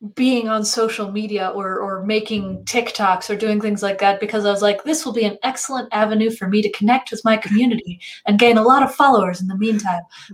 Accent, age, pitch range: American, 20-39, 200-230 Hz